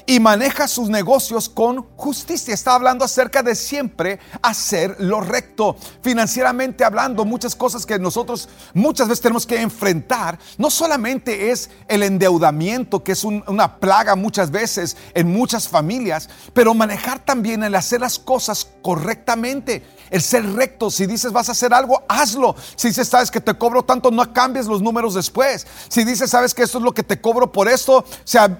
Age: 50-69